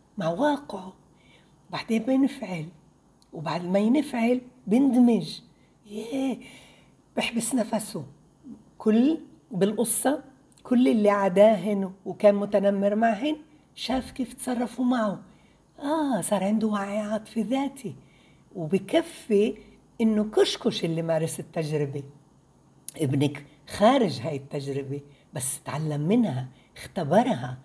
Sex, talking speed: female, 95 wpm